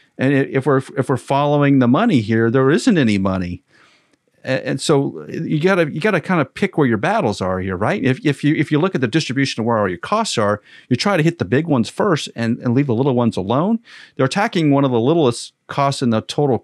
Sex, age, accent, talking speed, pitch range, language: male, 40-59, American, 250 wpm, 125-175 Hz, English